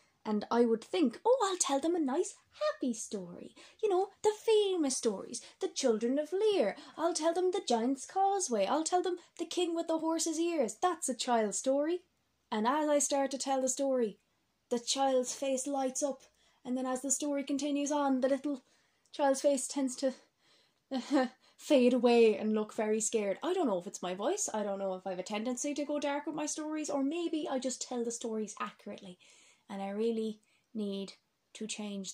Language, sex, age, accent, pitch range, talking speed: English, female, 20-39, Irish, 230-320 Hz, 200 wpm